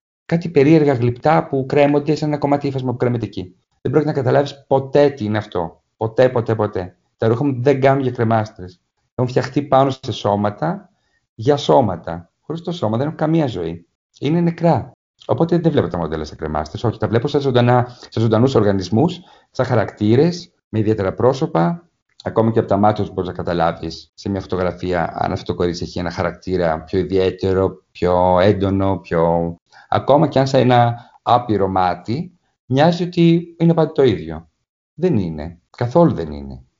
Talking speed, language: 170 wpm, Greek